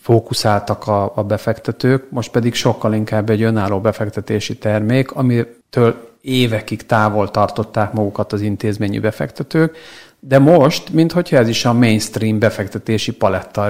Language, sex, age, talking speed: Hungarian, male, 50-69, 125 wpm